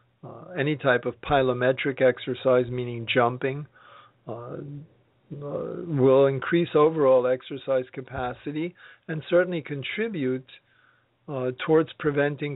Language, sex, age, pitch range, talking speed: English, male, 50-69, 130-155 Hz, 100 wpm